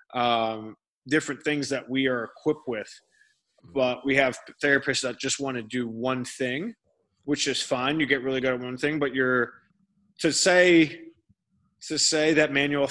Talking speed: 170 wpm